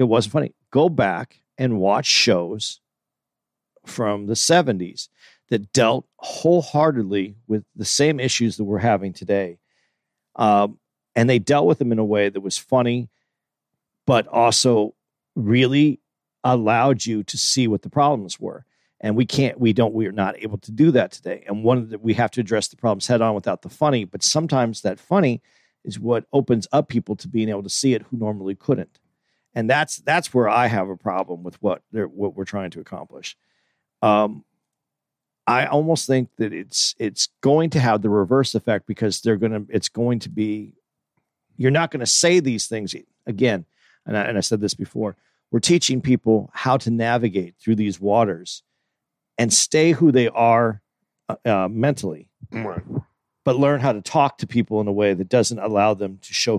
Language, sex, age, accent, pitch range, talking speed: English, male, 40-59, American, 105-130 Hz, 185 wpm